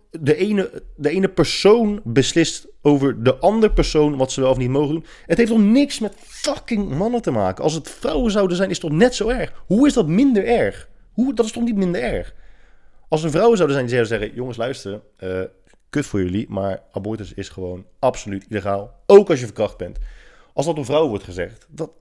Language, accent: Dutch, Dutch